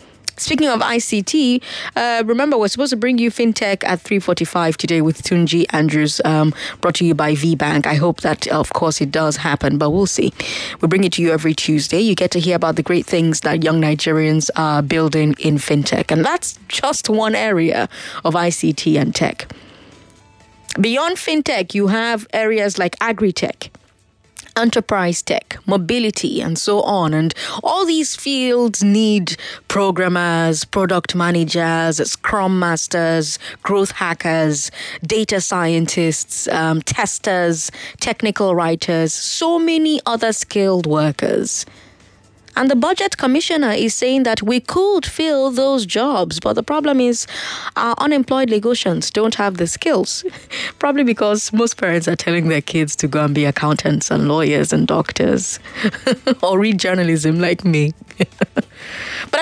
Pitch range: 160-225 Hz